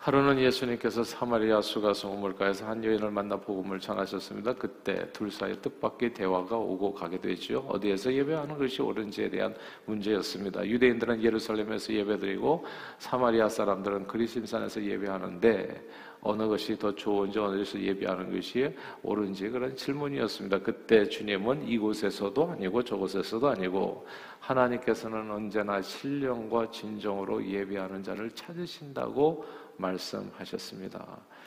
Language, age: Korean, 50-69